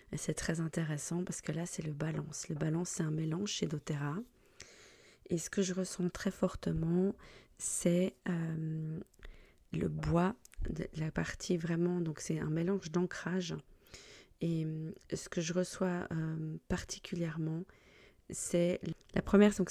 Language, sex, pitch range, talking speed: French, female, 155-180 Hz, 145 wpm